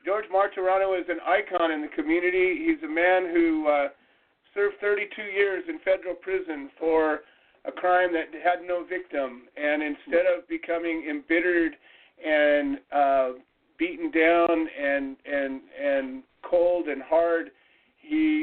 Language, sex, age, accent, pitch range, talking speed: English, male, 50-69, American, 160-200 Hz, 135 wpm